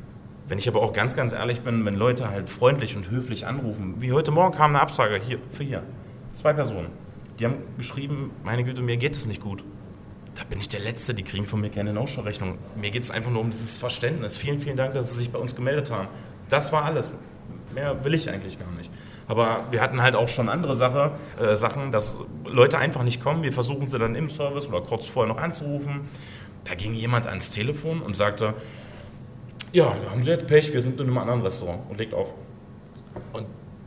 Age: 30-49